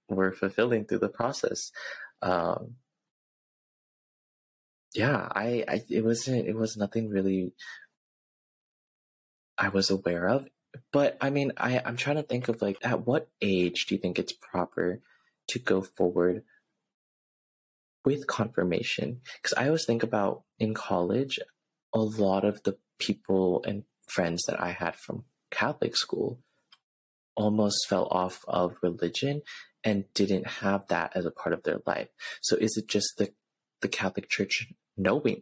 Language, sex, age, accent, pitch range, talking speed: English, male, 20-39, American, 90-110 Hz, 145 wpm